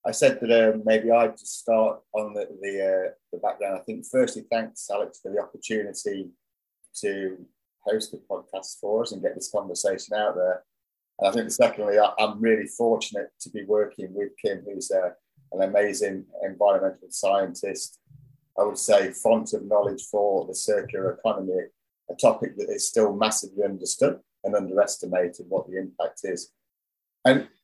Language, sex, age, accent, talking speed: English, male, 30-49, British, 165 wpm